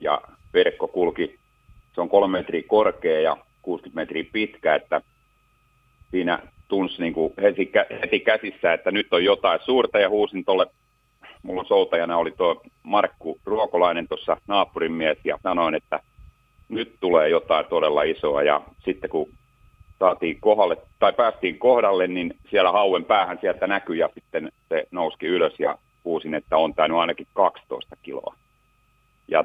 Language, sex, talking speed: Finnish, male, 140 wpm